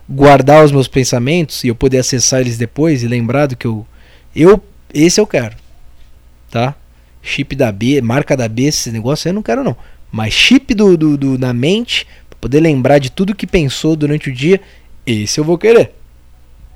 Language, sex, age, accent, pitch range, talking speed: Portuguese, male, 20-39, Brazilian, 115-155 Hz, 185 wpm